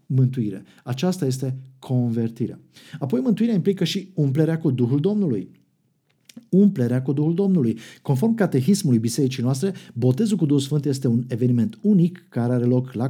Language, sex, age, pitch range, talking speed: Romanian, male, 50-69, 125-170 Hz, 145 wpm